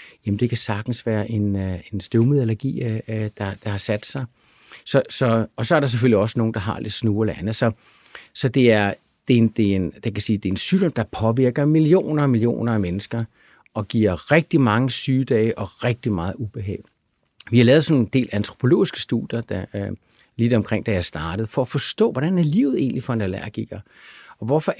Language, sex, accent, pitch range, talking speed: Danish, male, native, 105-140 Hz, 185 wpm